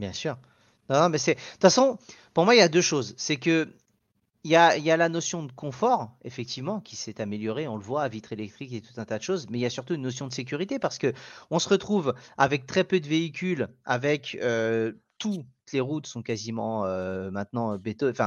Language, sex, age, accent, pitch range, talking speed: French, male, 40-59, French, 115-155 Hz, 235 wpm